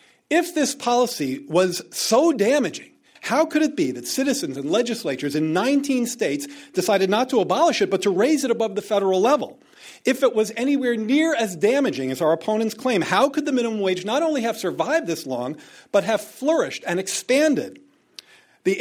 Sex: male